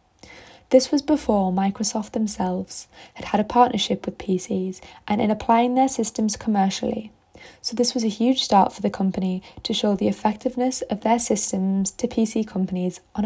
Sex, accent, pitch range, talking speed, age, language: female, British, 190-235 Hz, 165 wpm, 10-29, English